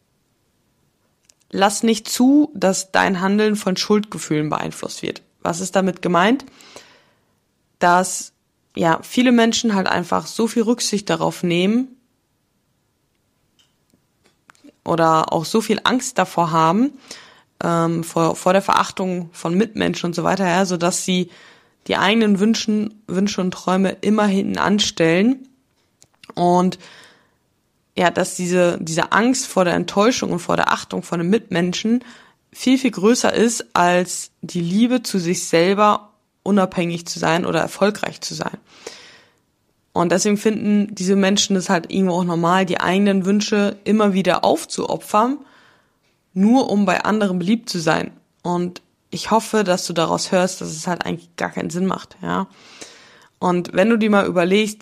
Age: 20-39